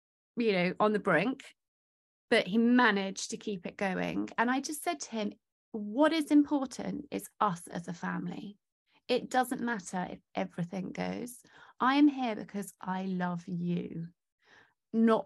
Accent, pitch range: British, 195-255 Hz